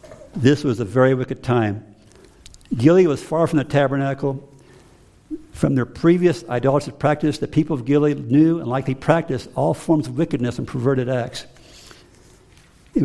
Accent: American